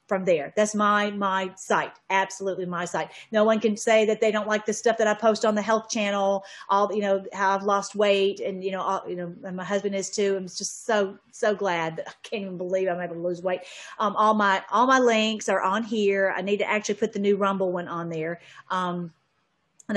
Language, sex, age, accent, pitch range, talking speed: English, female, 40-59, American, 190-230 Hz, 240 wpm